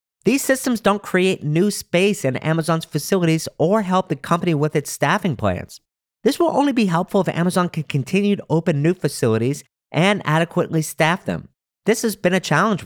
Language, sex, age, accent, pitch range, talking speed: English, male, 50-69, American, 155-200 Hz, 180 wpm